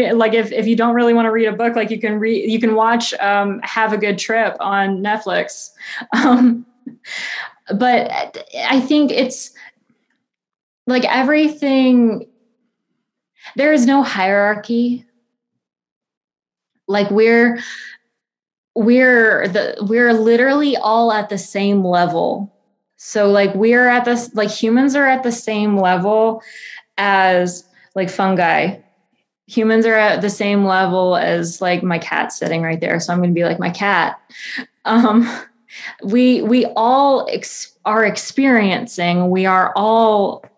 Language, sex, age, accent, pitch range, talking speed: English, female, 20-39, American, 195-240 Hz, 135 wpm